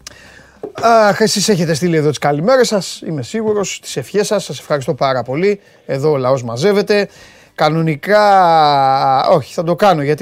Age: 30-49